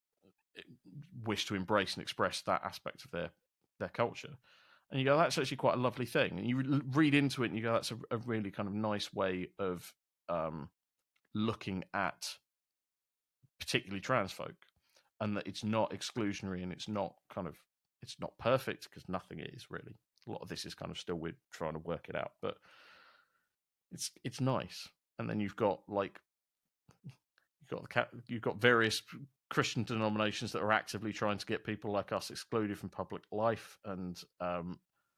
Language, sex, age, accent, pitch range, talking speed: English, male, 30-49, British, 95-120 Hz, 185 wpm